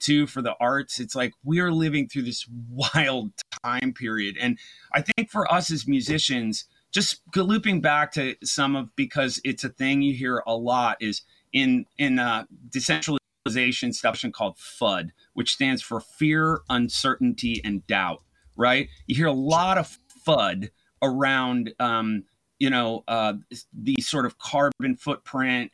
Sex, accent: male, American